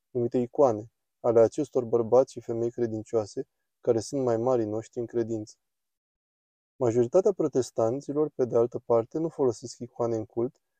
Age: 20-39